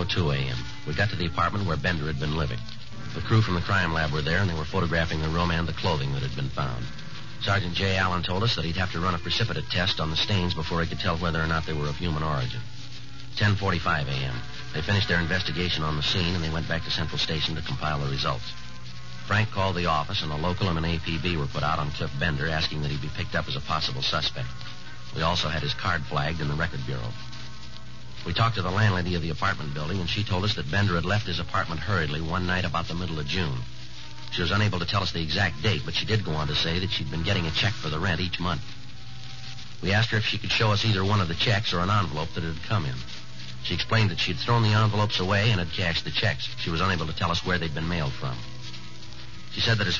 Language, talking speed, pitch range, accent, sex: English, 265 wpm, 80-105 Hz, American, male